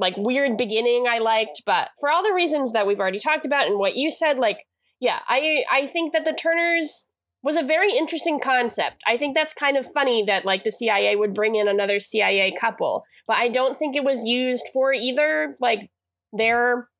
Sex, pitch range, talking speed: female, 200-265 Hz, 210 wpm